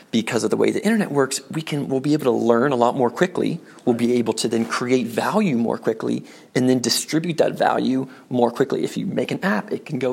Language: English